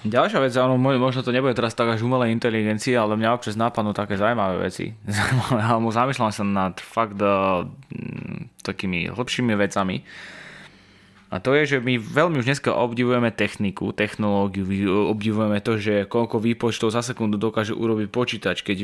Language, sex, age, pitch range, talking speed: Slovak, male, 20-39, 105-125 Hz, 155 wpm